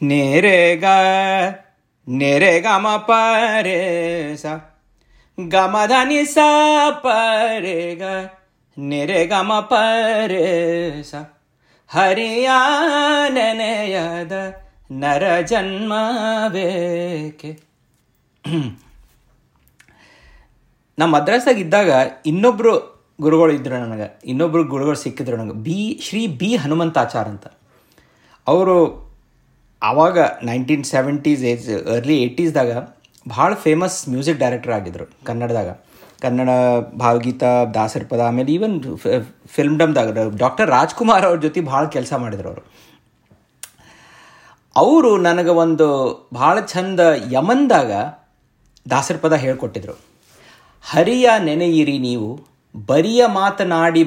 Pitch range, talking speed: 130-195 Hz, 80 wpm